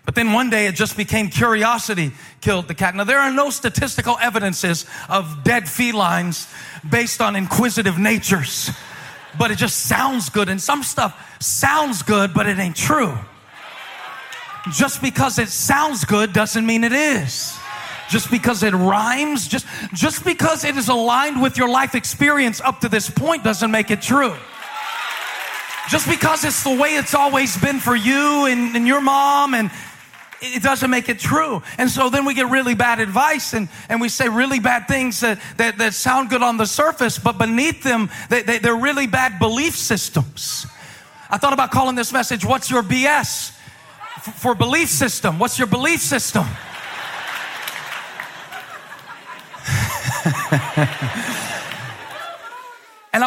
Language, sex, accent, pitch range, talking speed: English, male, American, 215-275 Hz, 155 wpm